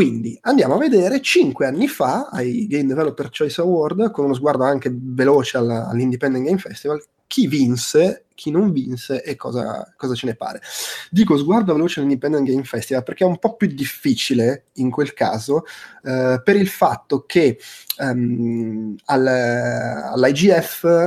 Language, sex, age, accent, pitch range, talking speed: Italian, male, 30-49, native, 120-150 Hz, 150 wpm